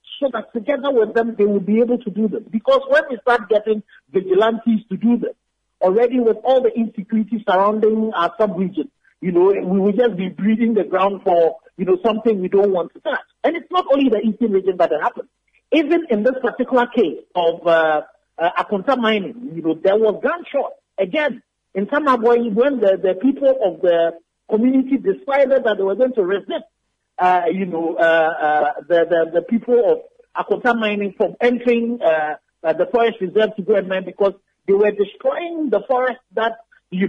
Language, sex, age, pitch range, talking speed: English, male, 50-69, 195-270 Hz, 195 wpm